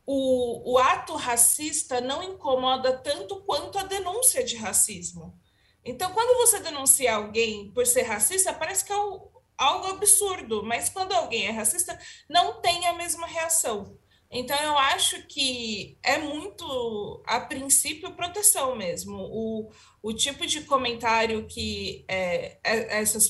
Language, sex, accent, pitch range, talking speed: Portuguese, female, Brazilian, 220-330 Hz, 135 wpm